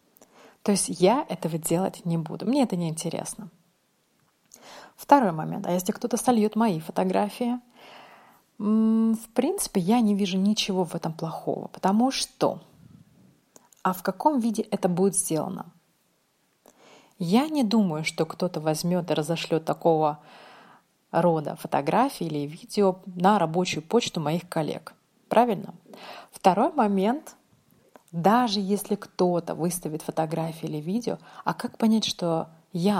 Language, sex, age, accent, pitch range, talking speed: Russian, female, 30-49, native, 170-215 Hz, 125 wpm